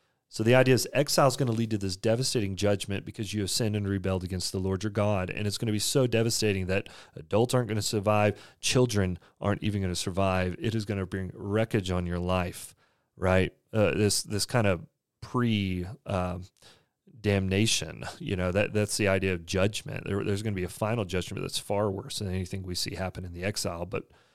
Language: English